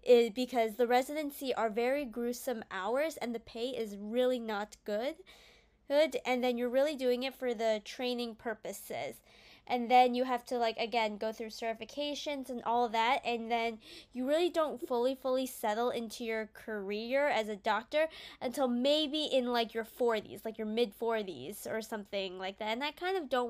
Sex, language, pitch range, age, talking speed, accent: female, English, 220-260 Hz, 10-29, 180 wpm, American